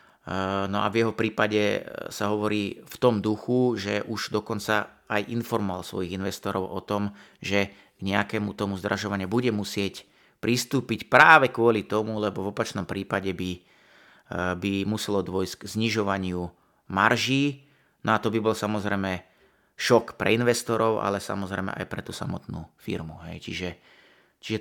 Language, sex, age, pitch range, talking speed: Slovak, male, 30-49, 100-115 Hz, 145 wpm